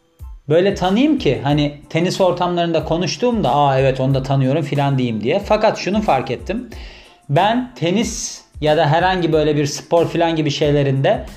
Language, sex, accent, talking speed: Turkish, male, native, 160 wpm